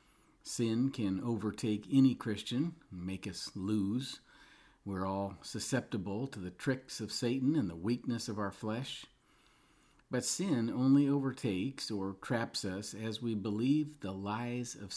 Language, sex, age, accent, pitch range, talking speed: English, male, 50-69, American, 95-125 Hz, 140 wpm